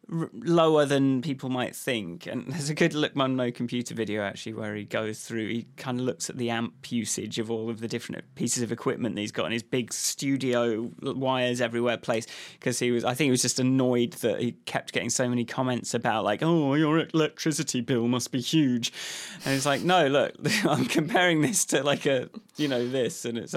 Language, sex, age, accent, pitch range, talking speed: English, male, 20-39, British, 120-160 Hz, 225 wpm